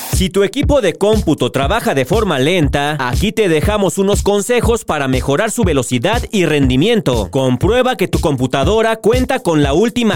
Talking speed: 165 wpm